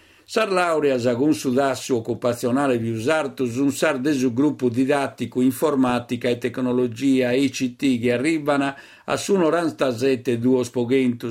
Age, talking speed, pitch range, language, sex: 50-69, 125 wpm, 125-145 Hz, Italian, male